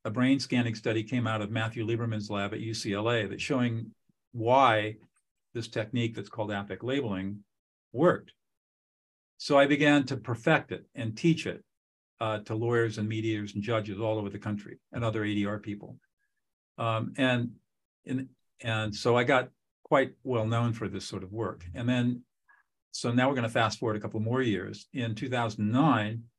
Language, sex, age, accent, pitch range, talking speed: English, male, 50-69, American, 105-120 Hz, 170 wpm